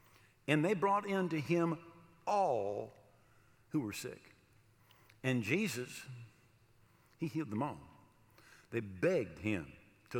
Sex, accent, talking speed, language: male, American, 120 wpm, English